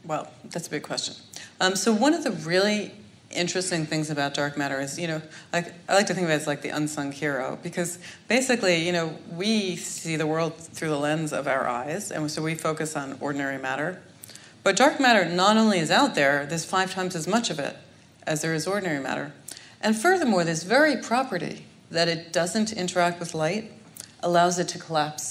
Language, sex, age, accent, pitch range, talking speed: English, female, 40-59, American, 160-205 Hz, 205 wpm